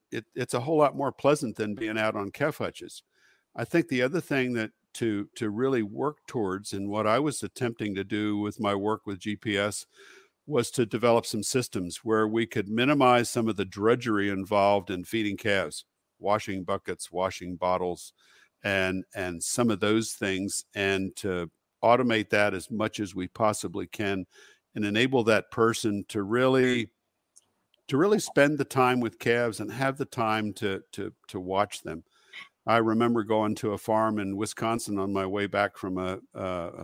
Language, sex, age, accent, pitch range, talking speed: English, male, 50-69, American, 100-120 Hz, 180 wpm